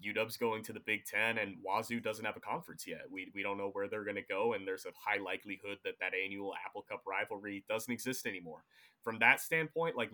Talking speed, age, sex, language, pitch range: 235 wpm, 30-49, male, English, 105-125 Hz